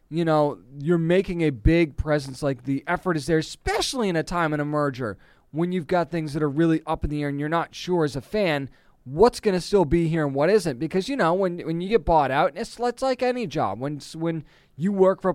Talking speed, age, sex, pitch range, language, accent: 260 wpm, 20-39, male, 140-190 Hz, English, American